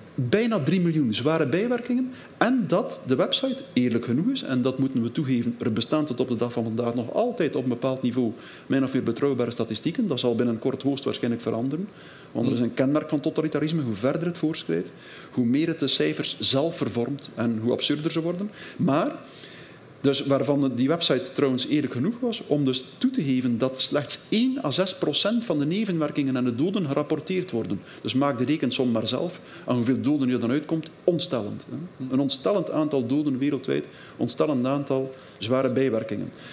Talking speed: 195 wpm